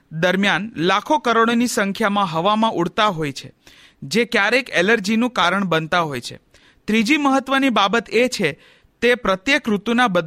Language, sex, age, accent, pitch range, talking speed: Hindi, male, 40-59, native, 185-245 Hz, 170 wpm